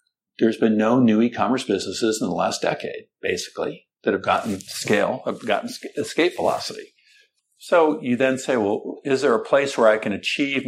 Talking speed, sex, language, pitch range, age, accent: 180 wpm, male, English, 100-125 Hz, 50-69, American